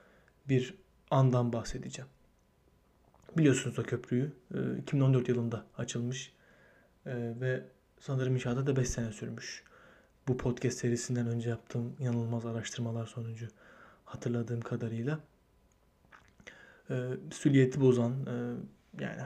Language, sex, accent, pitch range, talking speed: Turkish, male, native, 120-135 Hz, 90 wpm